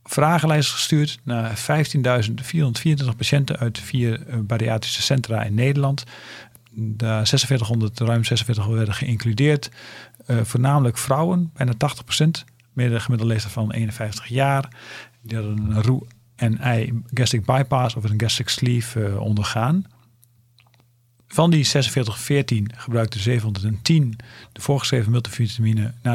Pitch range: 110-135 Hz